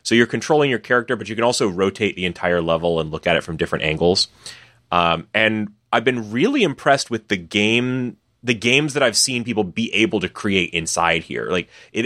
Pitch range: 90-125 Hz